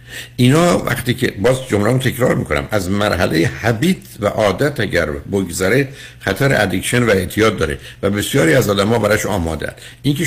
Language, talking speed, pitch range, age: Persian, 165 wpm, 100-125 Hz, 60-79